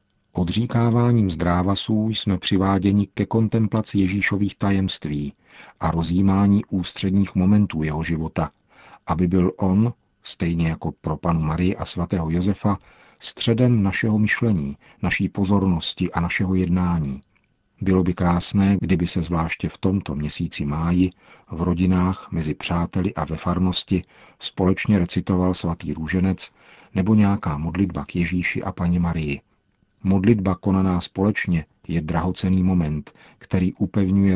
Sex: male